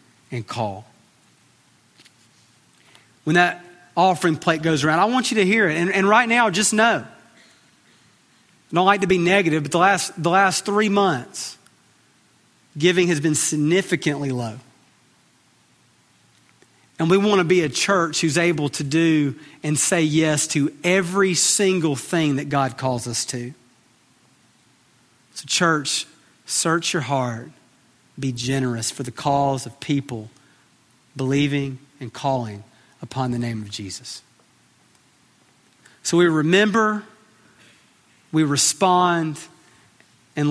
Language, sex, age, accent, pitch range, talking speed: English, male, 40-59, American, 135-185 Hz, 125 wpm